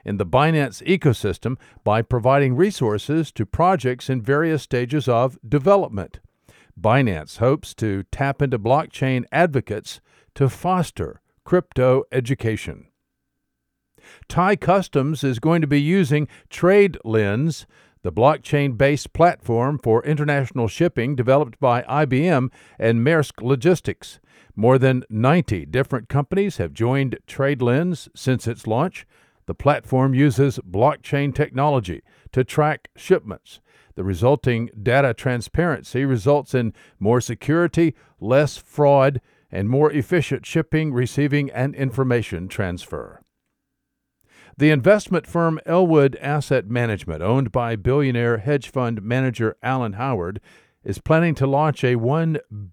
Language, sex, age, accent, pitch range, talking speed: English, male, 50-69, American, 115-150 Hz, 115 wpm